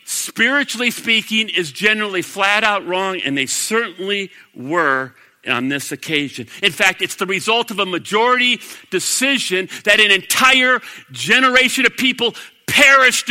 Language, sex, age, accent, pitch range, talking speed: English, male, 50-69, American, 155-240 Hz, 130 wpm